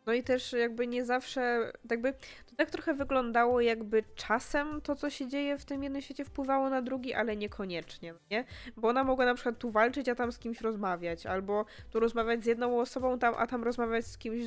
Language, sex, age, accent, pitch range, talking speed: Polish, female, 20-39, native, 200-240 Hz, 210 wpm